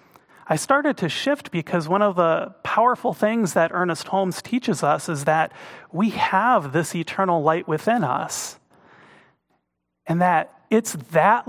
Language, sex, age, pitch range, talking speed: English, male, 30-49, 150-195 Hz, 145 wpm